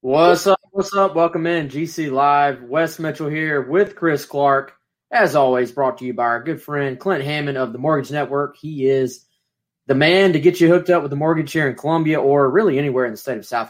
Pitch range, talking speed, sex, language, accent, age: 120-155 Hz, 230 wpm, male, English, American, 20-39